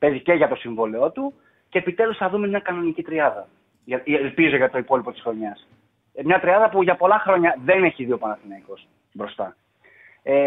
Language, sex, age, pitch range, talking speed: Greek, male, 20-39, 130-170 Hz, 180 wpm